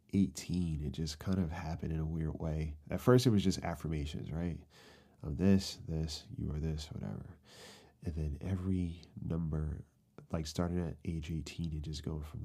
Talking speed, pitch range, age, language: 175 wpm, 75-90 Hz, 30-49, English